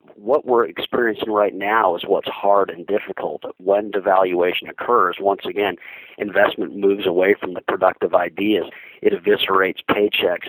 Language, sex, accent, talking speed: English, male, American, 145 wpm